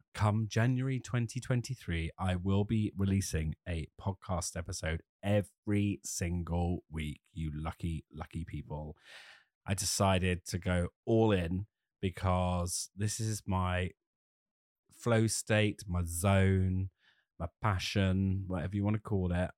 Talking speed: 120 wpm